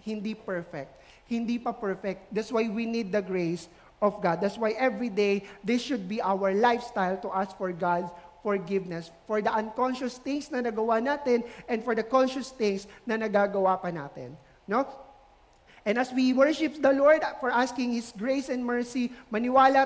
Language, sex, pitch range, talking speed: English, male, 195-255 Hz, 170 wpm